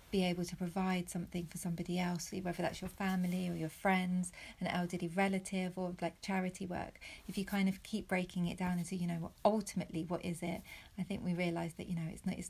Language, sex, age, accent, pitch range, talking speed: English, female, 30-49, British, 170-190 Hz, 230 wpm